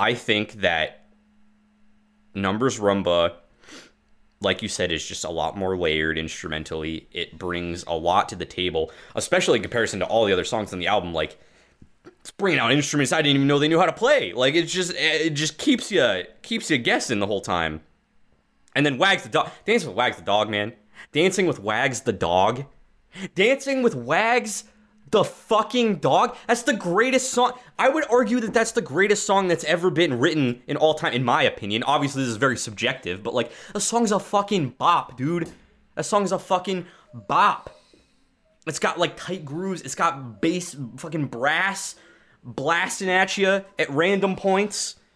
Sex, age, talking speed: male, 20-39, 180 wpm